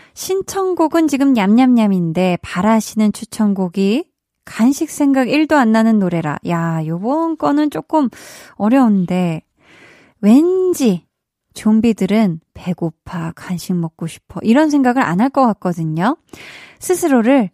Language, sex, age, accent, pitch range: Korean, female, 20-39, native, 185-260 Hz